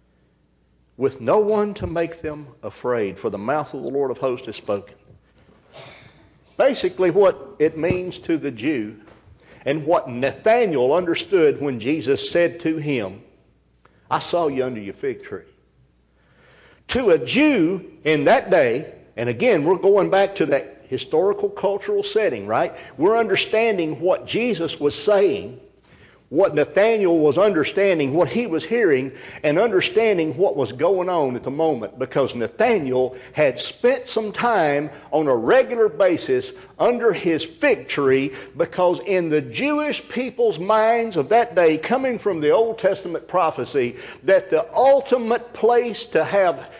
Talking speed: 145 wpm